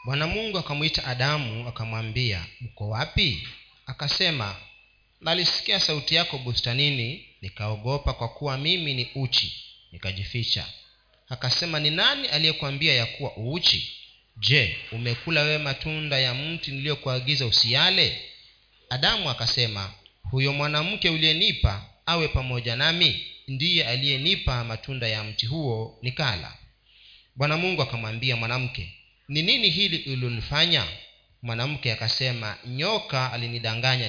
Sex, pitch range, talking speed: male, 115-150 Hz, 105 wpm